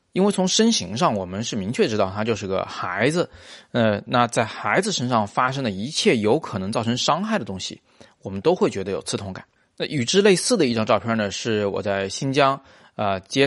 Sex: male